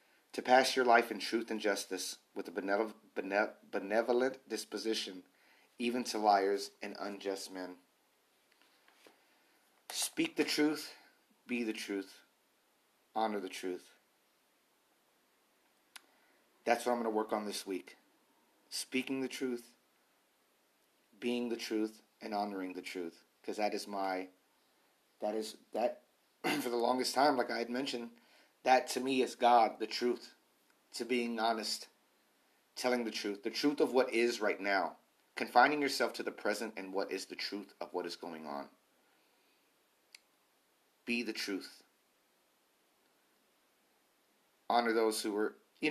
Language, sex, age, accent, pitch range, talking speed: English, male, 30-49, American, 105-130 Hz, 135 wpm